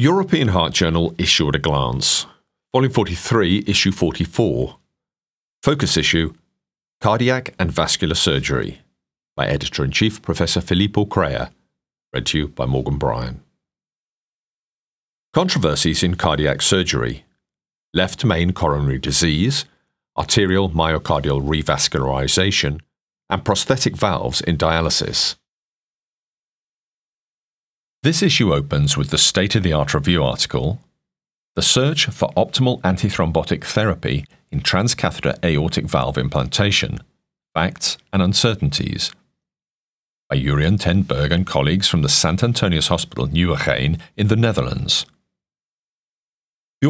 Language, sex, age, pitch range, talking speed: English, male, 40-59, 75-100 Hz, 105 wpm